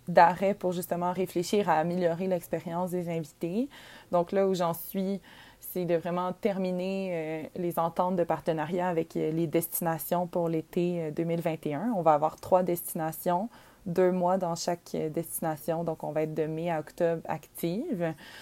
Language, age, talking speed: French, 20-39, 155 wpm